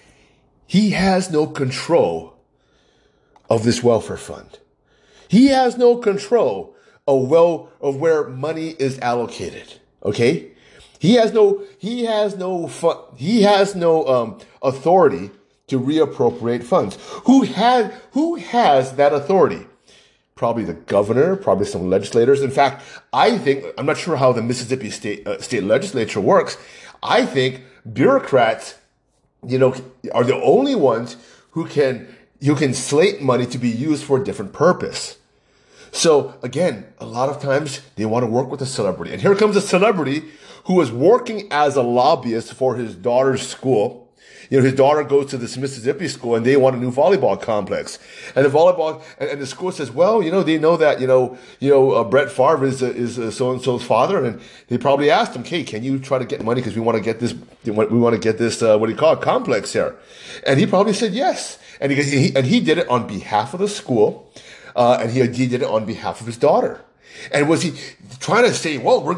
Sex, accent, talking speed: male, American, 190 wpm